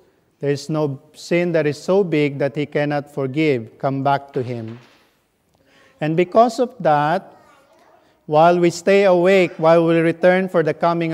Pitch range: 140-170 Hz